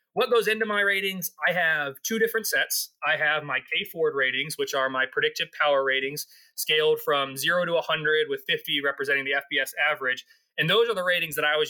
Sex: male